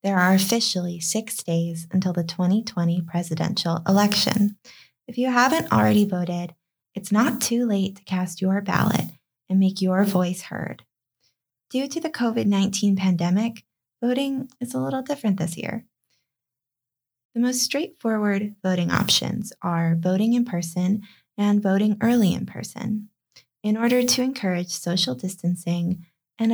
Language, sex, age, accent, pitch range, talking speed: English, female, 20-39, American, 175-225 Hz, 140 wpm